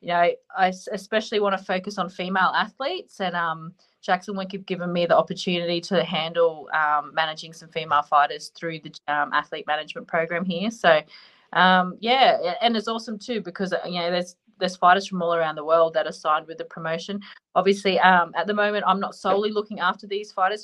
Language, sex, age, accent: English, female, 20-39, Australian